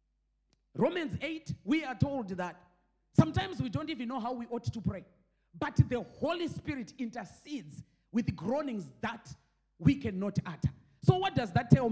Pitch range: 195-305 Hz